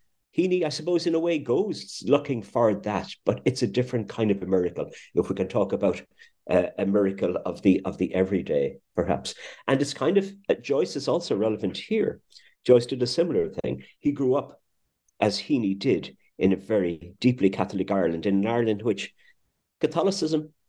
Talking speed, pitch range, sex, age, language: 185 wpm, 95-135 Hz, male, 50-69, English